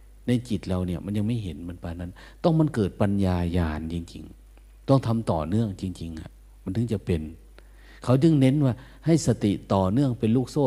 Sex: male